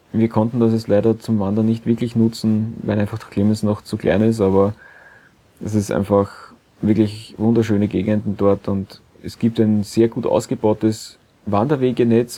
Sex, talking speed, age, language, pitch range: male, 165 wpm, 30-49, German, 105-120 Hz